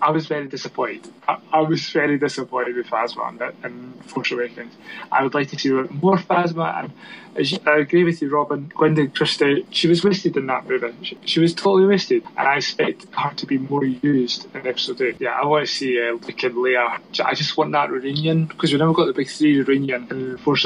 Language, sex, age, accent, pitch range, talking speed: English, male, 20-39, British, 130-165 Hz, 220 wpm